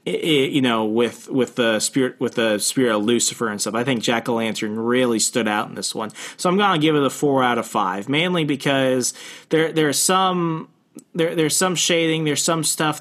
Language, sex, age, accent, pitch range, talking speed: English, male, 30-49, American, 125-155 Hz, 210 wpm